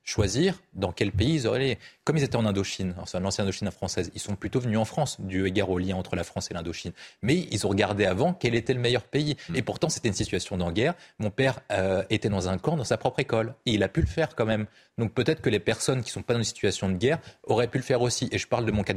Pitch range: 100-130 Hz